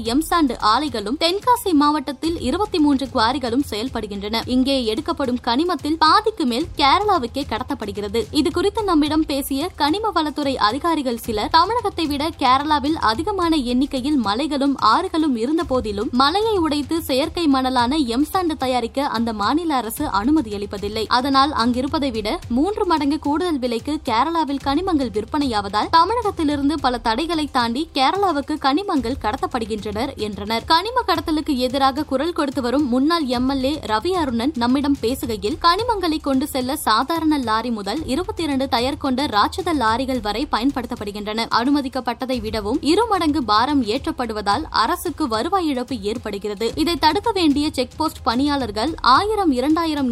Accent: native